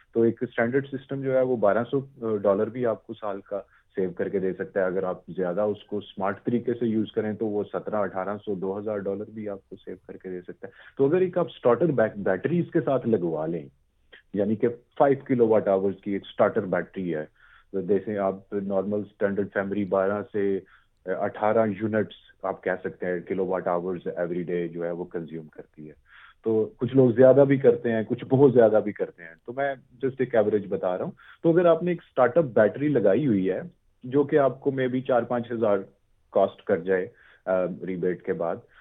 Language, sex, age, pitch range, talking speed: Urdu, male, 40-59, 100-130 Hz, 210 wpm